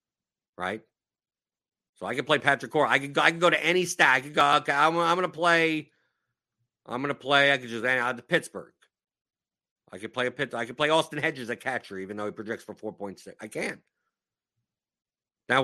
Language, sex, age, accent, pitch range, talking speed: English, male, 50-69, American, 120-160 Hz, 205 wpm